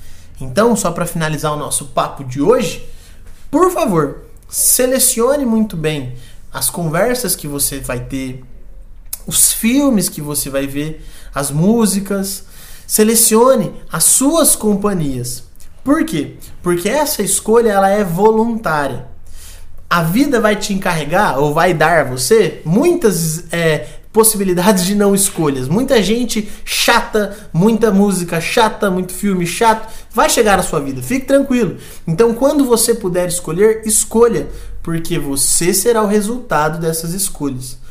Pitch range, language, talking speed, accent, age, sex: 150-220 Hz, Portuguese, 135 wpm, Brazilian, 20-39, male